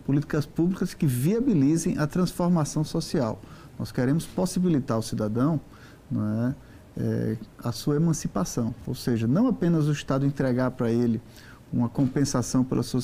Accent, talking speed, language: Brazilian, 145 wpm, Portuguese